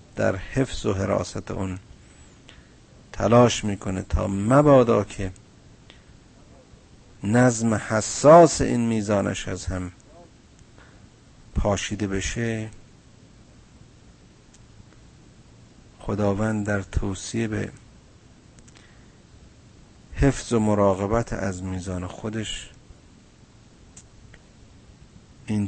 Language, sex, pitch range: Persian, male, 100-125 Hz